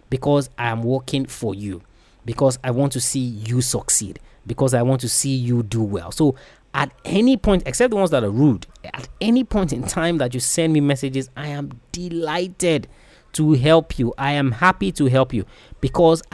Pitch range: 125-165 Hz